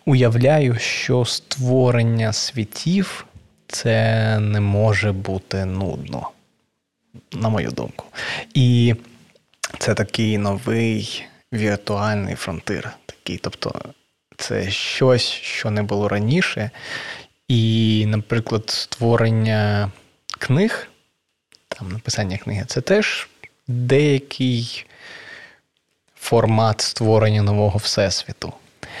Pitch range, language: 105-125 Hz, Ukrainian